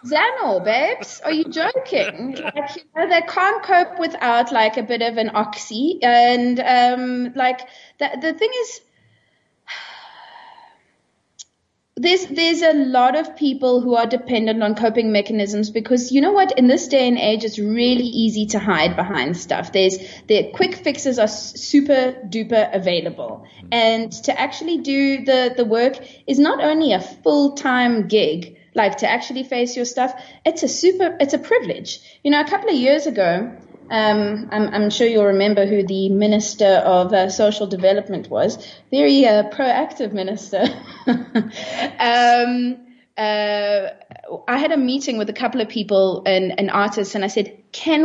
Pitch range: 210-290 Hz